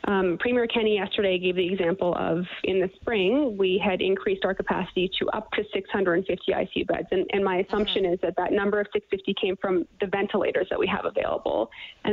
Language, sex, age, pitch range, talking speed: English, female, 20-39, 190-235 Hz, 205 wpm